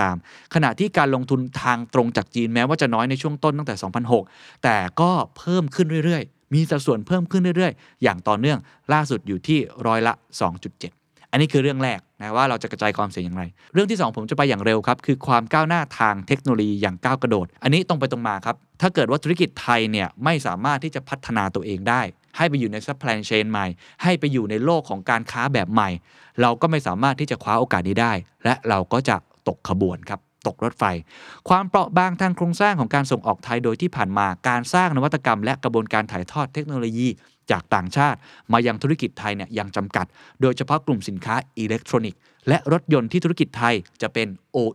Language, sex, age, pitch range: Thai, male, 20-39, 110-155 Hz